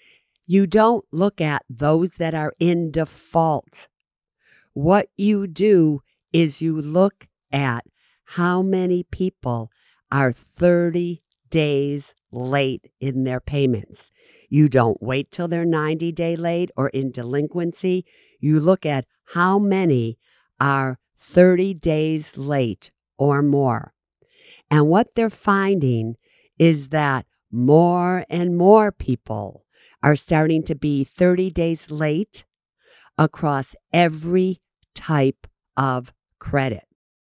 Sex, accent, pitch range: female, American, 135-175 Hz